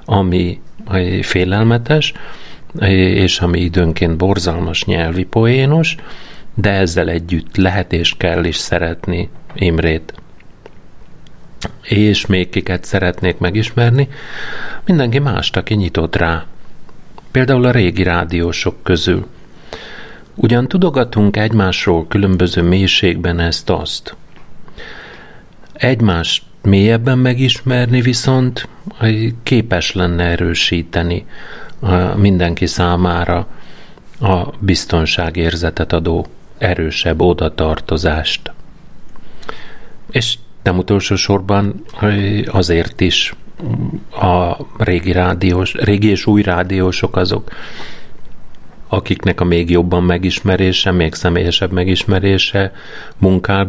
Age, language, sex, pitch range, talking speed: 50-69, Hungarian, male, 85-110 Hz, 85 wpm